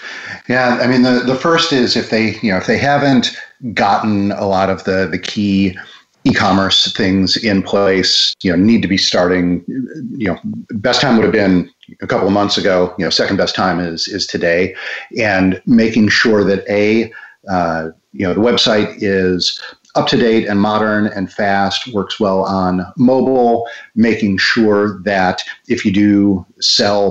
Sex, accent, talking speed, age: male, American, 180 wpm, 40-59